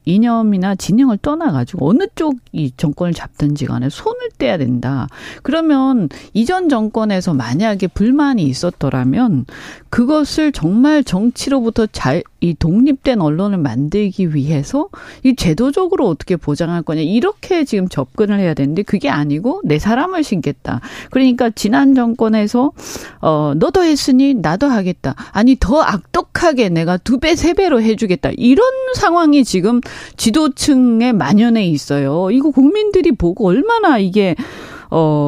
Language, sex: Korean, female